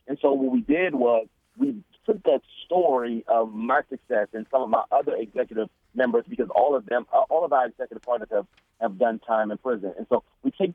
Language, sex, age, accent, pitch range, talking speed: English, male, 40-59, American, 115-165 Hz, 220 wpm